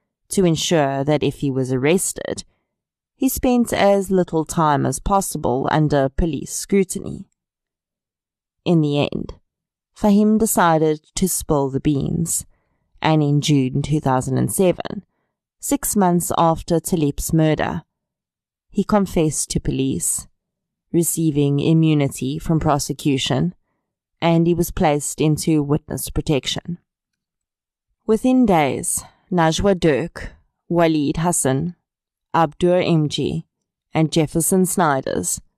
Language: English